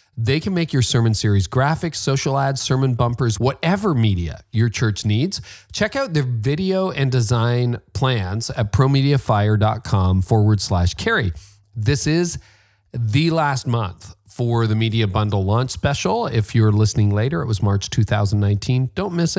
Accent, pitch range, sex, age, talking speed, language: American, 105-130 Hz, male, 40-59, 150 wpm, English